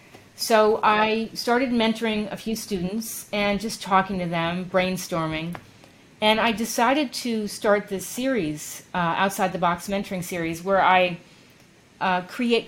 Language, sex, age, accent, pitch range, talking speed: English, female, 40-59, American, 180-225 Hz, 140 wpm